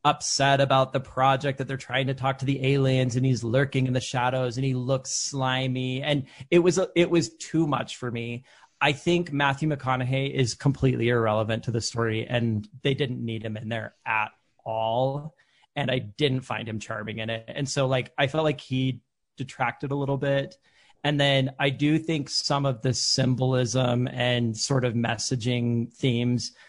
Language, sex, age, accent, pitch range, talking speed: English, male, 30-49, American, 120-140 Hz, 185 wpm